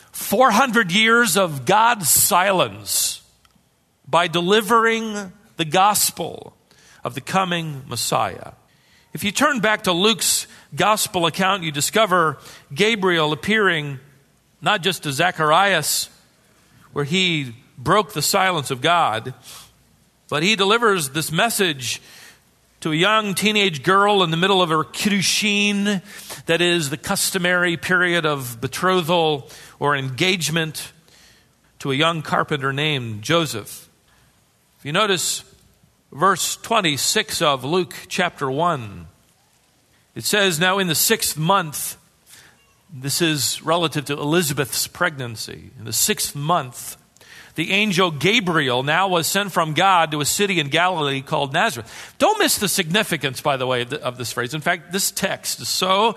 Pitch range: 145-195 Hz